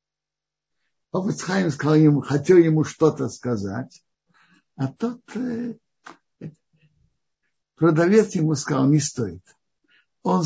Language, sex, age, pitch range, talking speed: Russian, male, 60-79, 145-185 Hz, 85 wpm